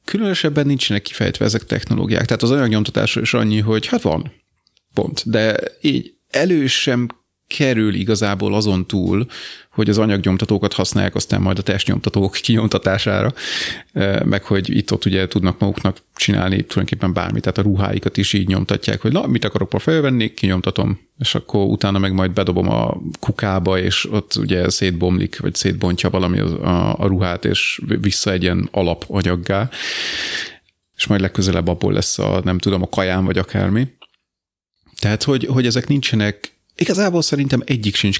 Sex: male